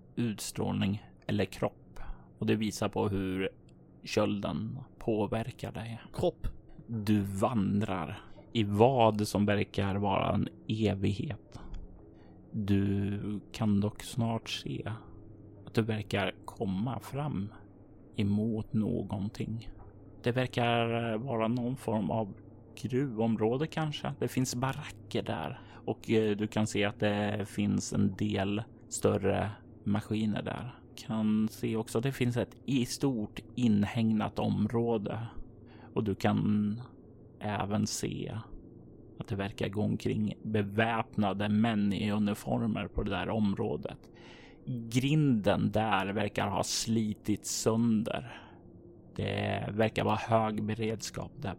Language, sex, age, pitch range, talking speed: Swedish, male, 30-49, 100-115 Hz, 115 wpm